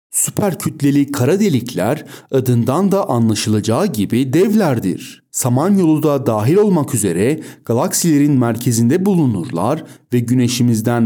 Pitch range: 110-145 Hz